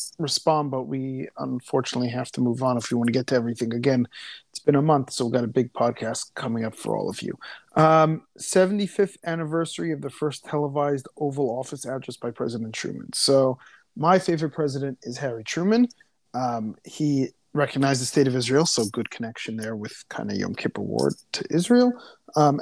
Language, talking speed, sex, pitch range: English, 190 wpm, male, 120-150 Hz